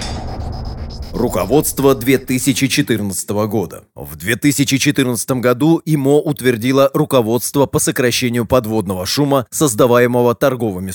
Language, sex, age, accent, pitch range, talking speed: Russian, male, 30-49, native, 115-145 Hz, 80 wpm